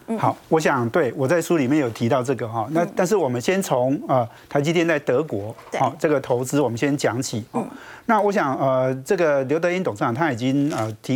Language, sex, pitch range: Chinese, male, 130-175 Hz